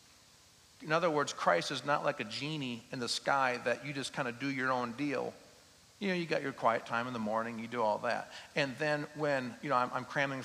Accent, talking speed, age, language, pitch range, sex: American, 245 wpm, 40-59, English, 110-145 Hz, male